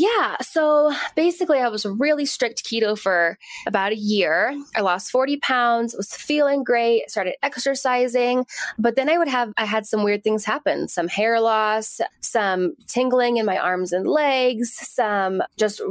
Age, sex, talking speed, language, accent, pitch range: 10-29, female, 165 wpm, English, American, 205-260 Hz